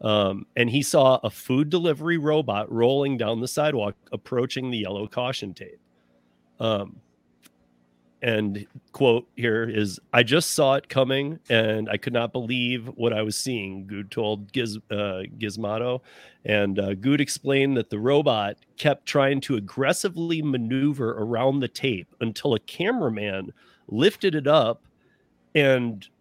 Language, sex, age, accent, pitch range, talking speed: English, male, 40-59, American, 105-140 Hz, 140 wpm